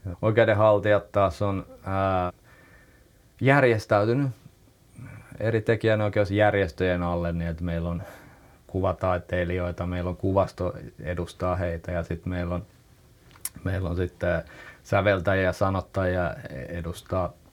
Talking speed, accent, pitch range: 100 wpm, native, 90-105 Hz